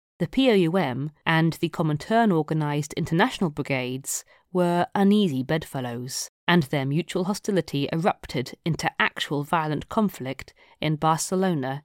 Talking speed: 105 wpm